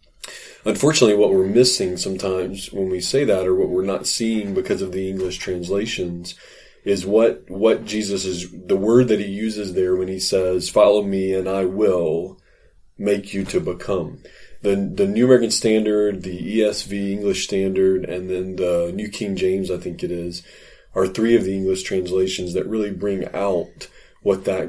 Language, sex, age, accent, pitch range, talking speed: English, male, 30-49, American, 95-110 Hz, 175 wpm